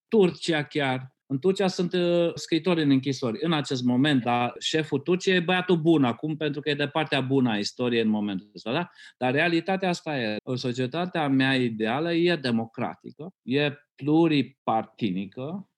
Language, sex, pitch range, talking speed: Romanian, male, 115-150 Hz, 165 wpm